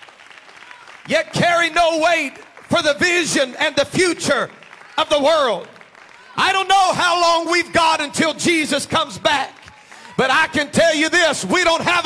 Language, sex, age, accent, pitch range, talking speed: English, male, 40-59, American, 225-320 Hz, 165 wpm